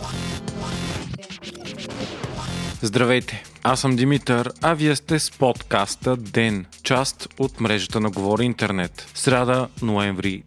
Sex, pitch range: male, 115-150 Hz